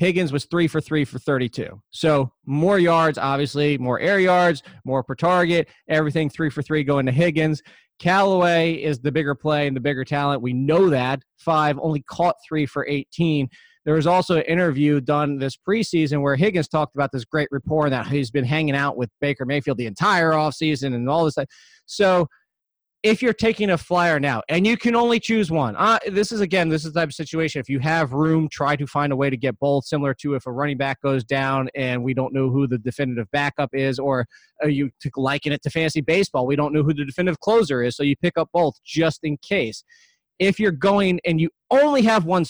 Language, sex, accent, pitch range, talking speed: English, male, American, 140-170 Hz, 220 wpm